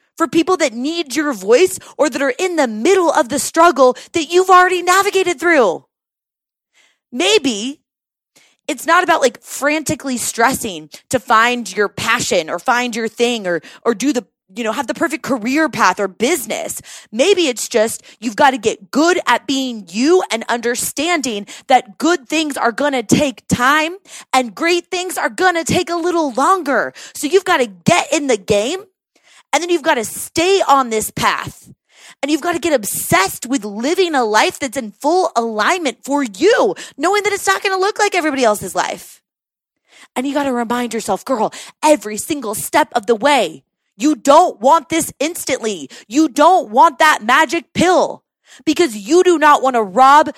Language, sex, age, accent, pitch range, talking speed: English, female, 30-49, American, 245-340 Hz, 185 wpm